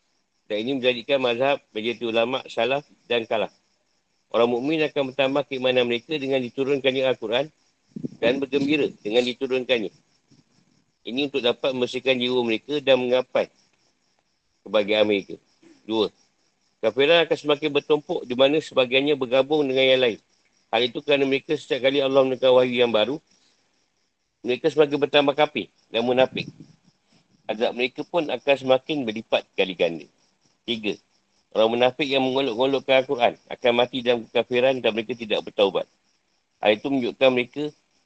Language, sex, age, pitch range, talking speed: Malay, male, 50-69, 115-140 Hz, 135 wpm